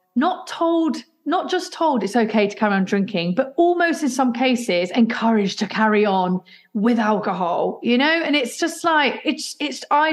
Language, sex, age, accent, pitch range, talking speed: English, female, 40-59, British, 200-265 Hz, 185 wpm